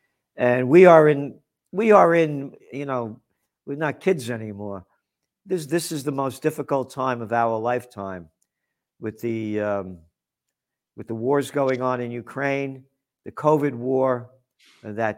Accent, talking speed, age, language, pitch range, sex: American, 145 wpm, 50-69, English, 120-170 Hz, male